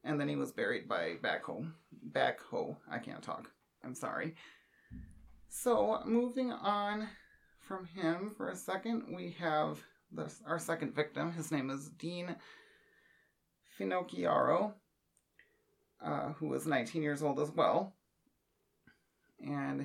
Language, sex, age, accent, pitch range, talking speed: English, male, 30-49, American, 140-190 Hz, 120 wpm